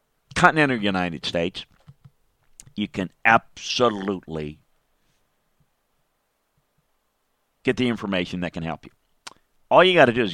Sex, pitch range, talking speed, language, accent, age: male, 95-120 Hz, 110 wpm, English, American, 40-59